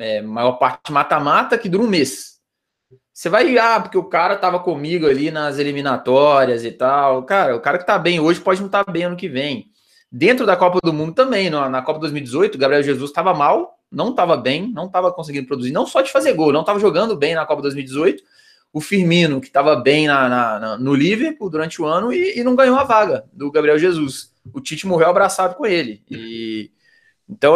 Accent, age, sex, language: Brazilian, 20-39, male, Portuguese